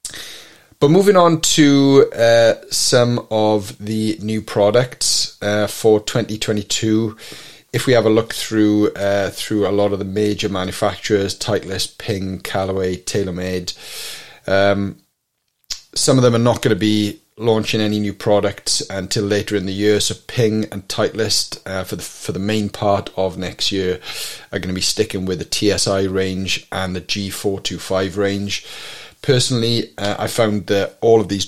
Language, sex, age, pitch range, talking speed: English, male, 30-49, 95-110 Hz, 165 wpm